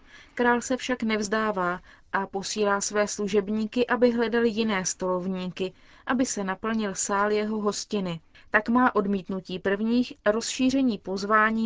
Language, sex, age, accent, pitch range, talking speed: Czech, female, 20-39, native, 195-235 Hz, 125 wpm